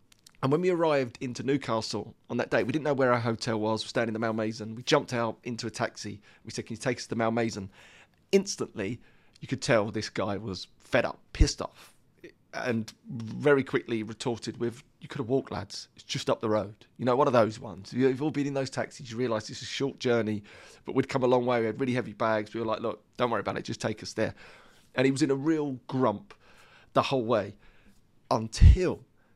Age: 30-49